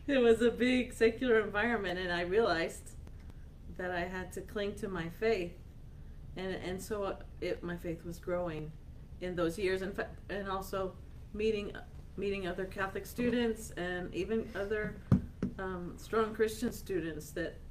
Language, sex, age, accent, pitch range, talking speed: English, female, 40-59, American, 170-210 Hz, 150 wpm